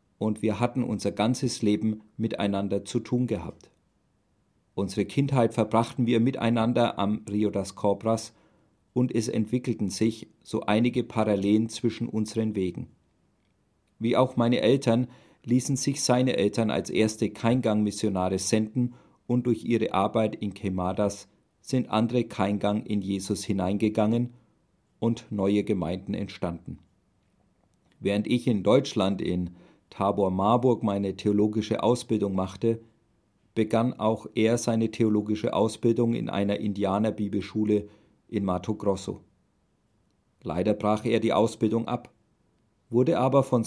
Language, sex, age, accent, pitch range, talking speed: German, male, 40-59, German, 100-120 Hz, 120 wpm